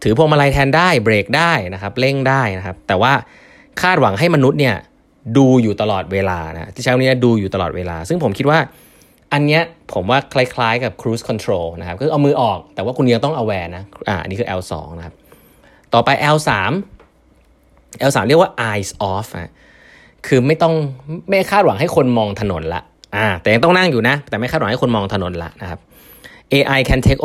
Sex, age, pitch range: male, 20-39, 95-135 Hz